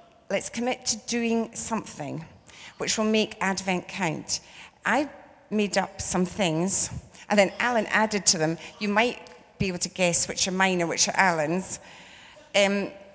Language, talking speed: English, 160 wpm